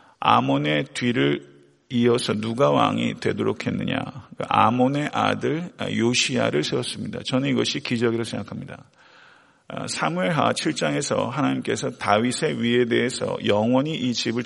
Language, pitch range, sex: Korean, 110-130 Hz, male